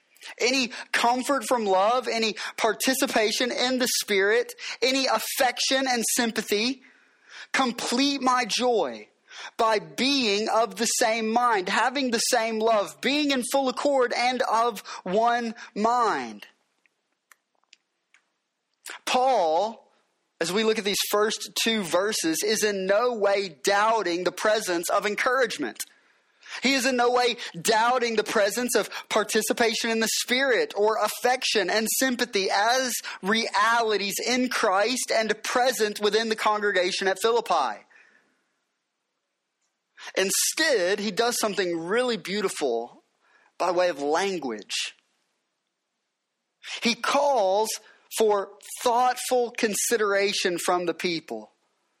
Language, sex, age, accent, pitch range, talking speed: English, male, 30-49, American, 205-250 Hz, 115 wpm